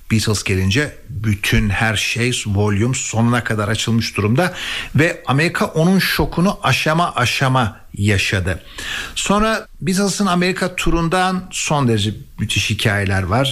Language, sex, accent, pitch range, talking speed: Turkish, male, native, 110-155 Hz, 115 wpm